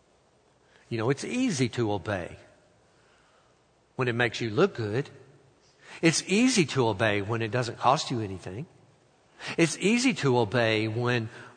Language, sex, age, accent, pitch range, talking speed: English, male, 60-79, American, 110-140 Hz, 140 wpm